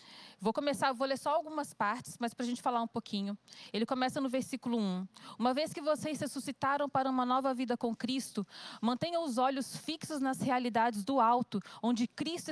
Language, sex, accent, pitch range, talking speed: Portuguese, female, Brazilian, 230-275 Hz, 195 wpm